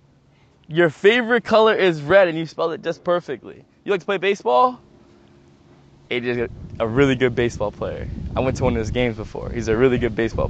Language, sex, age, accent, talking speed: English, male, 20-39, American, 200 wpm